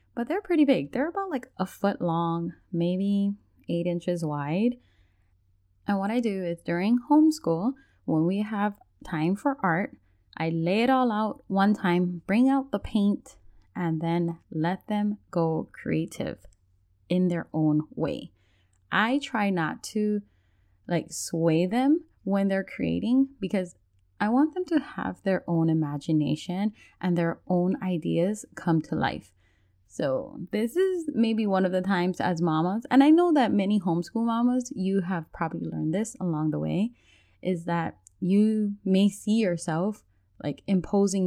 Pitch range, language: 165-220 Hz, English